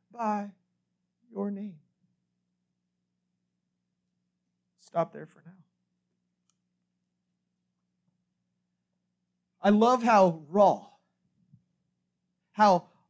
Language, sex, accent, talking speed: English, male, American, 55 wpm